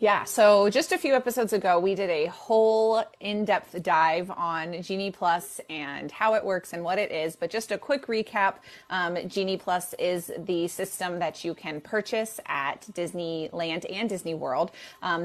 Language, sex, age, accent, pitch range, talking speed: English, female, 20-39, American, 170-220 Hz, 175 wpm